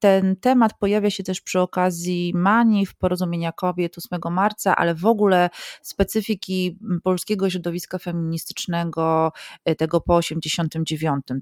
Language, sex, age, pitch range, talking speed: Polish, female, 30-49, 160-200 Hz, 120 wpm